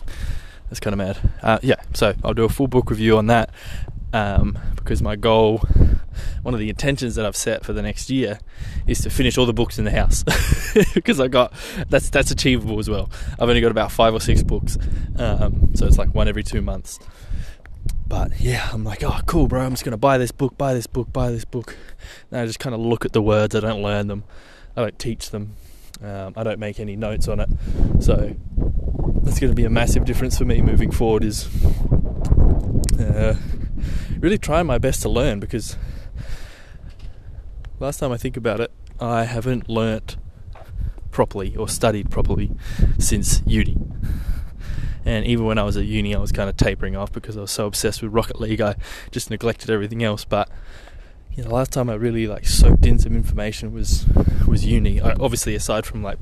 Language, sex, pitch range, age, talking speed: English, male, 95-115 Hz, 20-39, 200 wpm